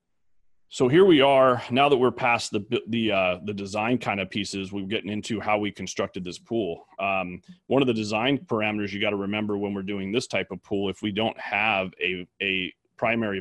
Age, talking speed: 30-49, 215 wpm